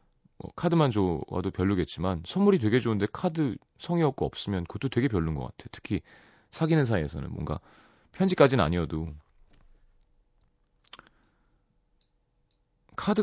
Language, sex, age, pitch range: Korean, male, 30-49, 85-135 Hz